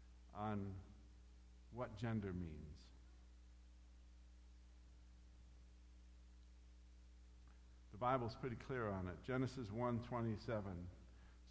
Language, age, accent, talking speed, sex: English, 50-69, American, 65 wpm, male